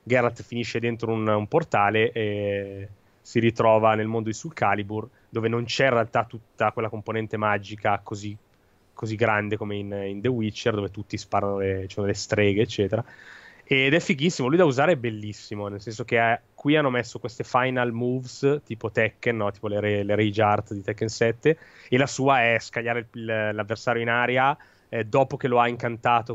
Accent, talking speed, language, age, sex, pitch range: native, 190 wpm, Italian, 20-39, male, 105-130 Hz